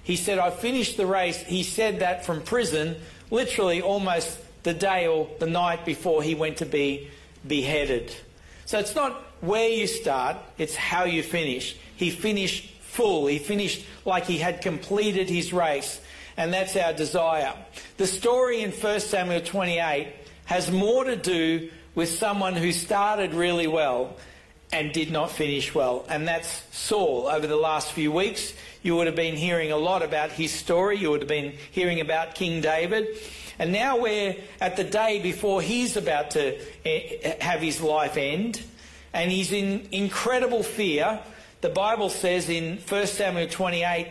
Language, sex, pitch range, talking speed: English, male, 160-205 Hz, 165 wpm